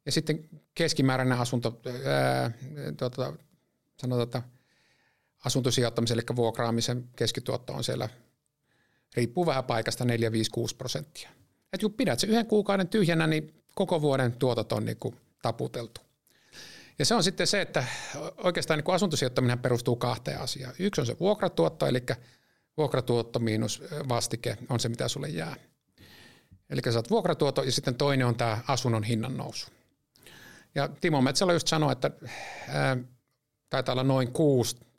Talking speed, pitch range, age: 130 wpm, 120-150 Hz, 50-69